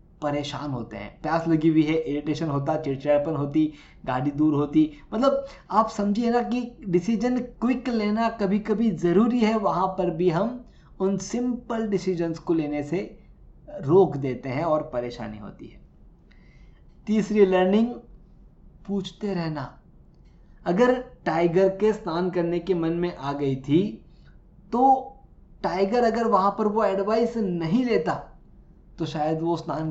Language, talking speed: Hindi, 140 wpm